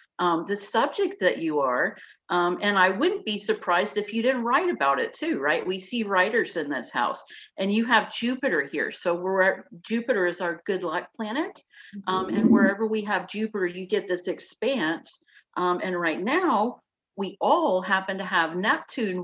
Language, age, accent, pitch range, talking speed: English, 50-69, American, 180-230 Hz, 185 wpm